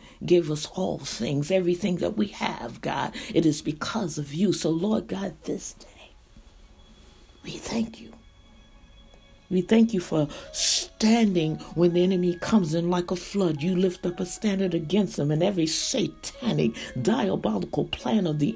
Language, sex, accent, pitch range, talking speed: English, female, American, 170-225 Hz, 160 wpm